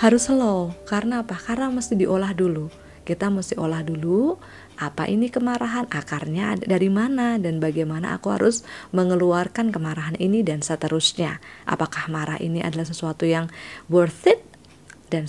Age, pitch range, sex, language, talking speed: 20-39, 165-235 Hz, female, Indonesian, 140 wpm